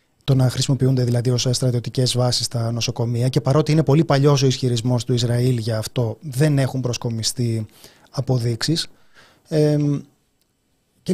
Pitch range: 120-160 Hz